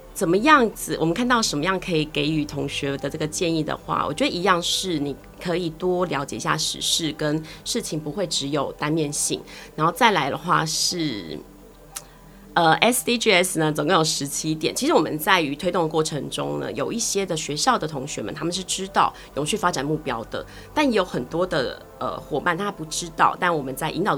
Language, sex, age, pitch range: Chinese, female, 20-39, 150-185 Hz